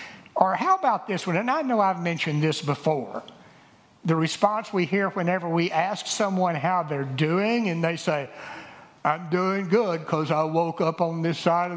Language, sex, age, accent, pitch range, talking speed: English, male, 60-79, American, 150-215 Hz, 190 wpm